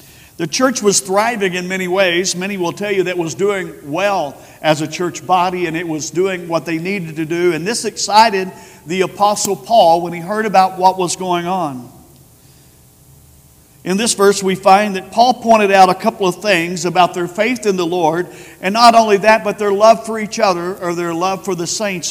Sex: male